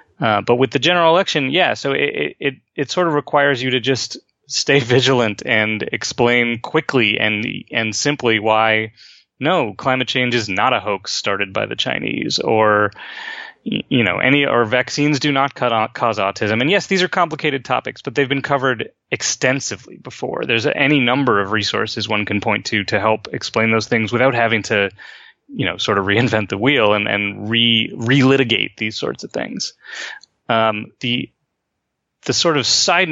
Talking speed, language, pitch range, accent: 175 wpm, English, 110-140 Hz, American